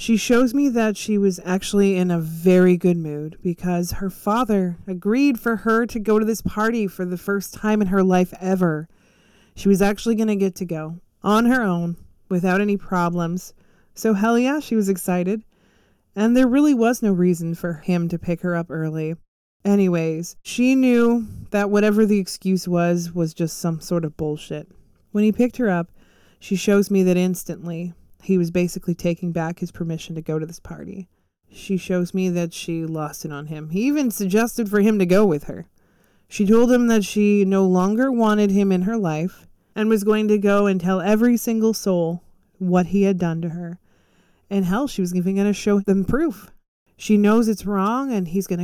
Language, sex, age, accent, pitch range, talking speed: English, female, 20-39, American, 175-215 Hz, 200 wpm